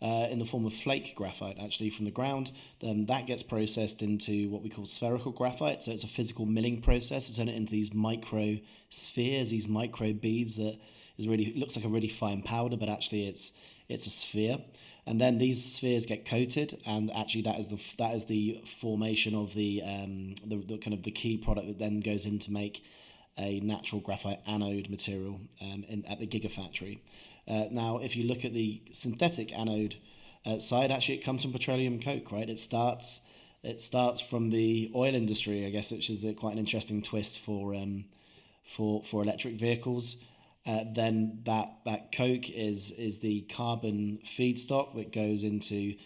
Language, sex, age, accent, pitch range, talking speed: English, male, 30-49, British, 105-115 Hz, 190 wpm